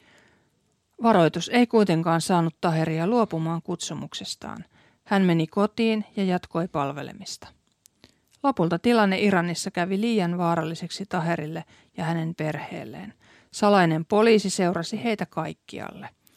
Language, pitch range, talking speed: Finnish, 165-210 Hz, 105 wpm